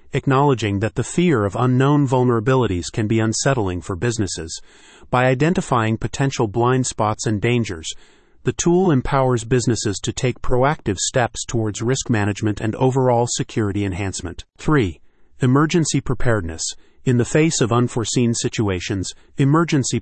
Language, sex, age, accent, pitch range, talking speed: English, male, 40-59, American, 105-135 Hz, 130 wpm